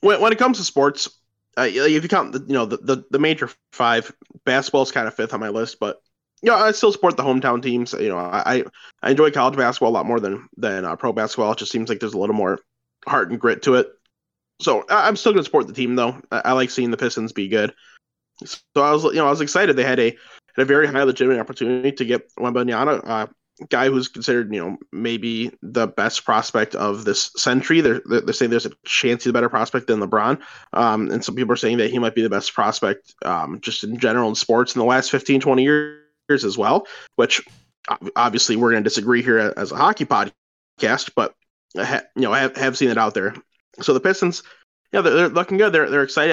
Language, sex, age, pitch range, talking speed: English, male, 20-39, 115-140 Hz, 240 wpm